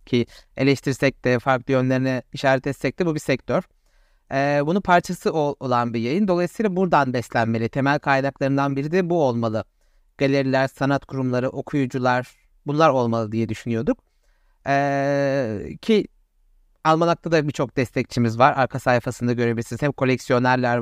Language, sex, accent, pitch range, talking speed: Turkish, male, native, 125-170 Hz, 135 wpm